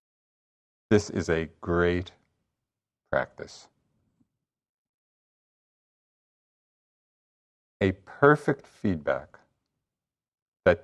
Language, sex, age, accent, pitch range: English, male, 50-69, American, 85-110 Hz